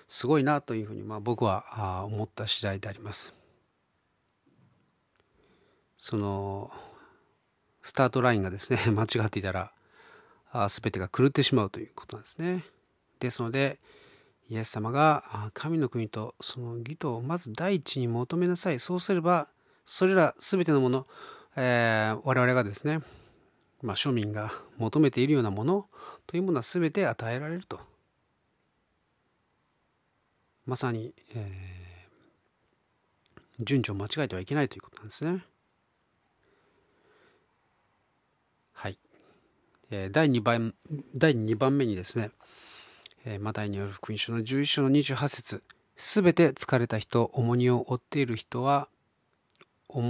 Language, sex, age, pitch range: Japanese, male, 40-59, 110-140 Hz